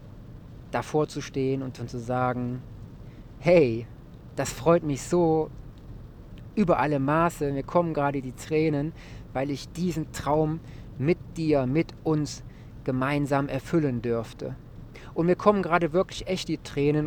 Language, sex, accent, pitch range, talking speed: German, male, German, 125-170 Hz, 135 wpm